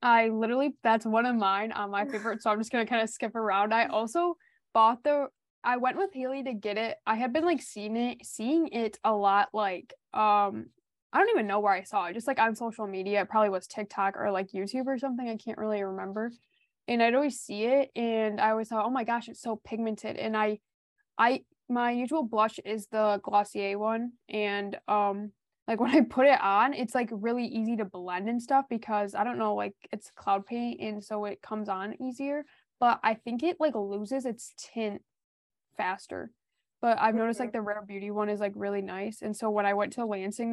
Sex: female